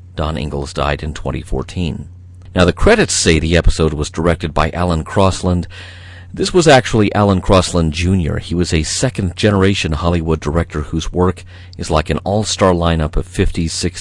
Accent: American